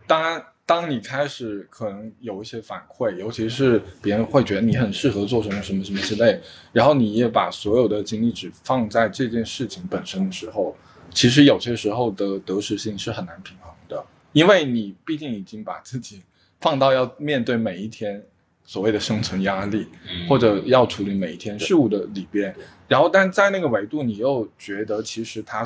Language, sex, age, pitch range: Chinese, male, 20-39, 105-145 Hz